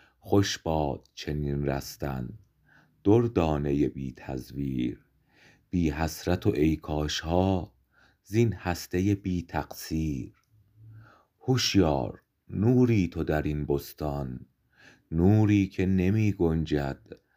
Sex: male